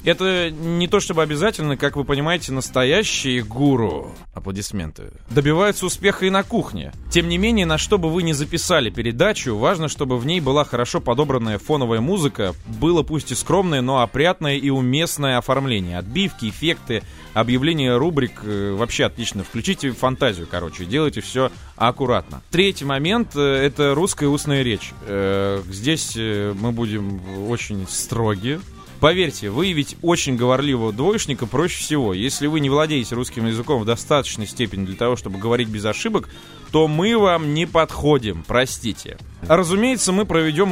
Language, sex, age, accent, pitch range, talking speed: Russian, male, 20-39, native, 115-160 Hz, 145 wpm